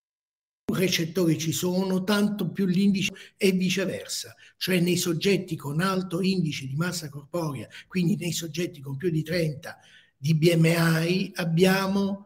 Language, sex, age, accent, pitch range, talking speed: Italian, male, 50-69, native, 140-185 Hz, 130 wpm